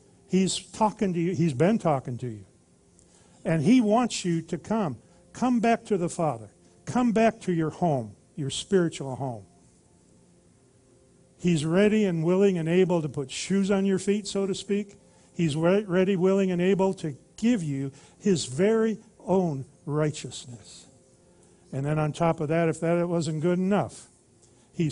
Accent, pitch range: American, 150-200 Hz